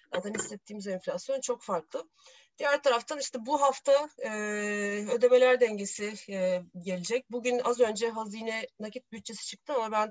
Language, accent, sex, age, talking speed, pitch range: Turkish, native, female, 40-59, 145 wpm, 195-250 Hz